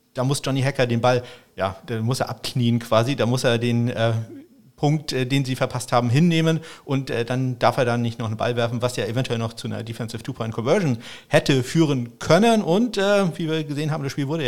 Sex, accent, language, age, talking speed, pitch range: male, German, German, 50-69, 230 wpm, 125-165 Hz